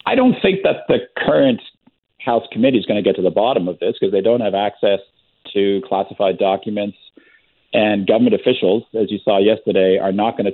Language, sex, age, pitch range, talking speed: English, male, 40-59, 90-100 Hz, 205 wpm